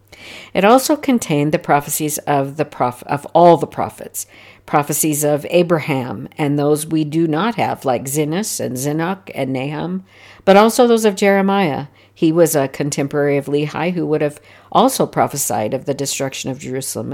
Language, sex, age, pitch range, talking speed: English, female, 50-69, 140-165 Hz, 170 wpm